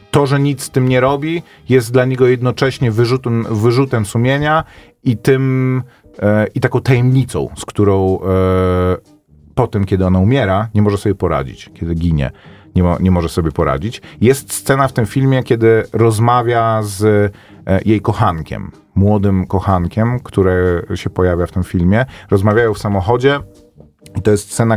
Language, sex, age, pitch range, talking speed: Polish, male, 30-49, 95-125 Hz, 150 wpm